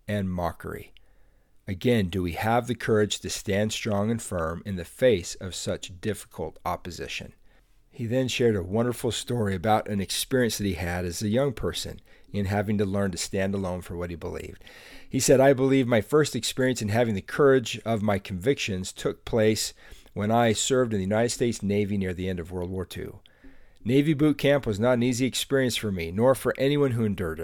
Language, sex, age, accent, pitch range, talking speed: English, male, 40-59, American, 95-125 Hz, 205 wpm